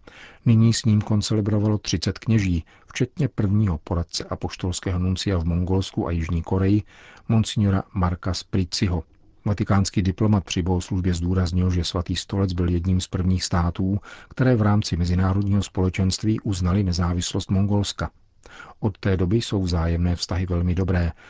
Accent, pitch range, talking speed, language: native, 90-105 Hz, 140 wpm, Czech